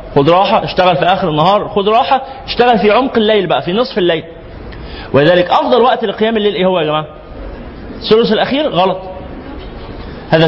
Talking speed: 160 wpm